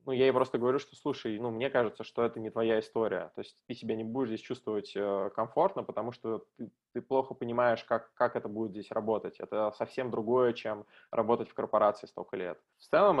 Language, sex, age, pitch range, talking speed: Russian, male, 20-39, 110-125 Hz, 215 wpm